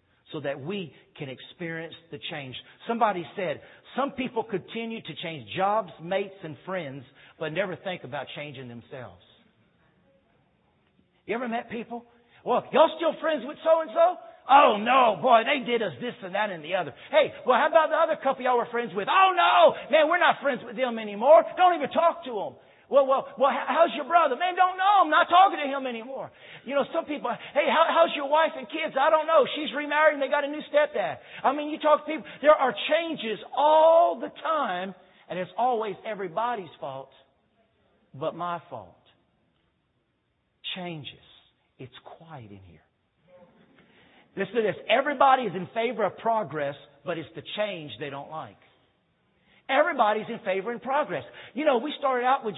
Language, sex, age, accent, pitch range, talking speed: English, male, 50-69, American, 185-295 Hz, 180 wpm